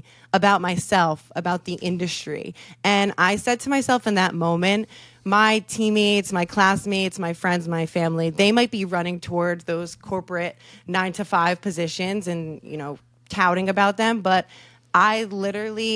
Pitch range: 170-205 Hz